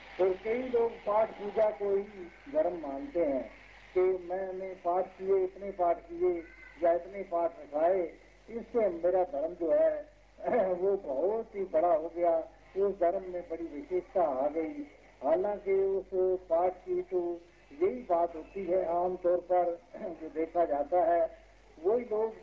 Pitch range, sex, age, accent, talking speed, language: 170-210 Hz, male, 50-69, native, 145 wpm, Hindi